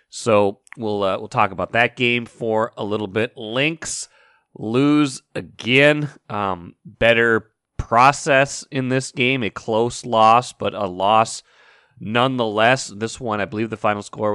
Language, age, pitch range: English, 30-49, 105-130 Hz